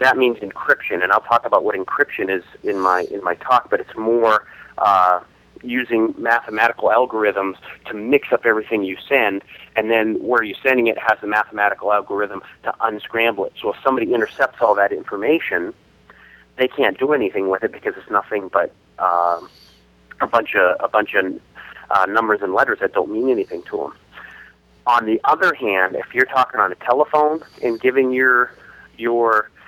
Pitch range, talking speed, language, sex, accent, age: 100-140 Hz, 180 wpm, English, male, American, 30-49